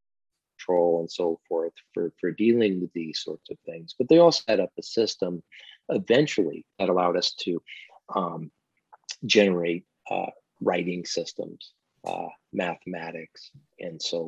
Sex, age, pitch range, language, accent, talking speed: male, 40-59, 90-110 Hz, English, American, 135 wpm